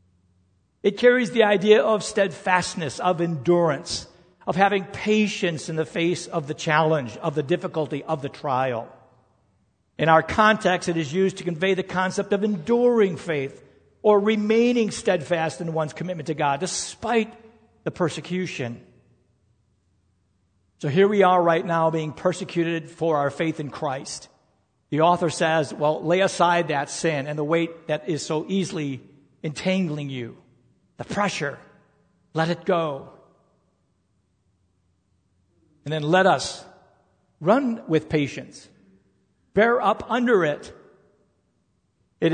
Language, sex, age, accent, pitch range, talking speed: English, male, 60-79, American, 145-190 Hz, 135 wpm